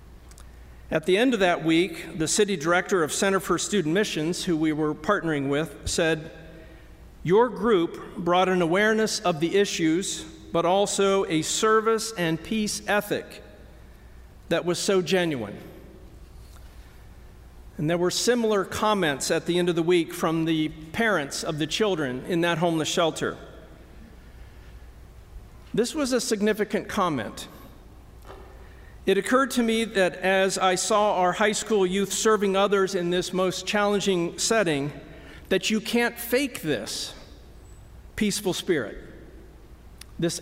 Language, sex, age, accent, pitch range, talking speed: English, male, 50-69, American, 155-200 Hz, 135 wpm